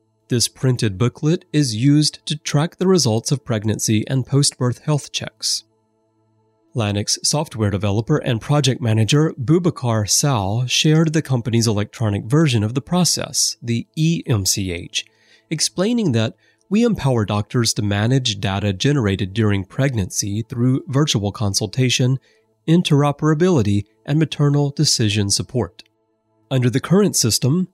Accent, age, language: American, 30-49, English